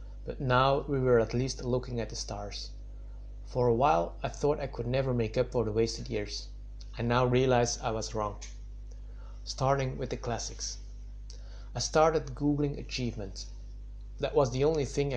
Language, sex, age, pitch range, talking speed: English, male, 30-49, 110-130 Hz, 170 wpm